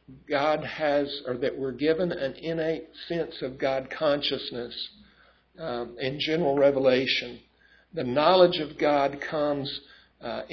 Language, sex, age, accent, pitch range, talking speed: English, male, 60-79, American, 130-155 Hz, 125 wpm